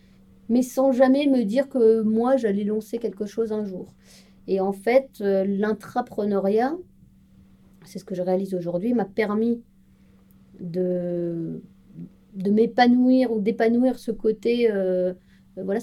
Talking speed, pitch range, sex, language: 130 wpm, 185-225 Hz, female, French